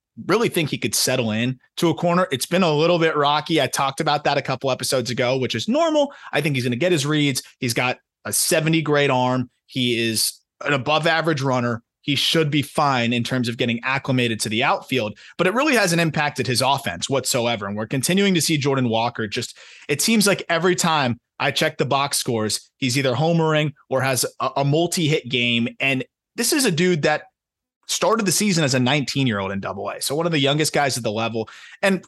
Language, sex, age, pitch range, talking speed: English, male, 30-49, 125-160 Hz, 225 wpm